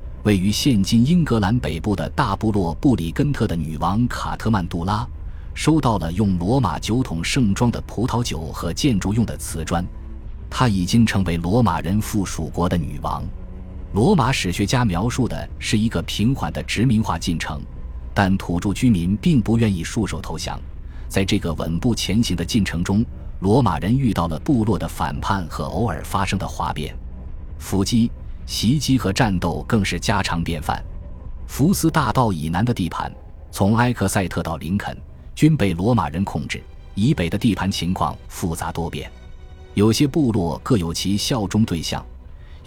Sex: male